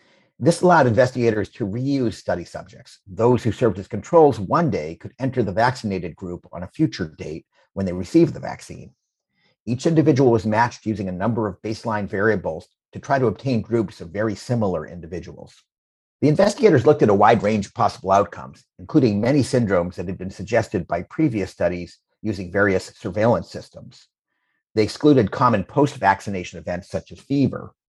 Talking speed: 170 wpm